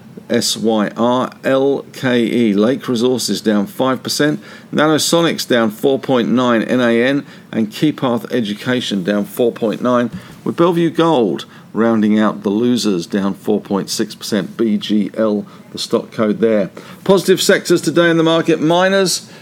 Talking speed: 110 wpm